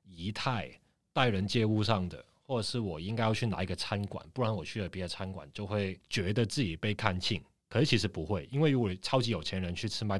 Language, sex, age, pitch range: Chinese, male, 30-49, 90-110 Hz